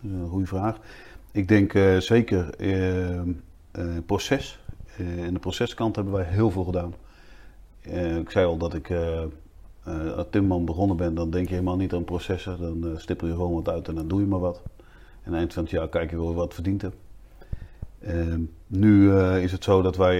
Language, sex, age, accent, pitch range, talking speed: Dutch, male, 40-59, Dutch, 85-100 Hz, 200 wpm